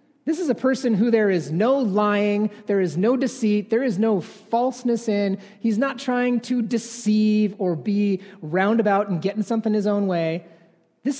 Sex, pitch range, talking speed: male, 180-240 Hz, 175 wpm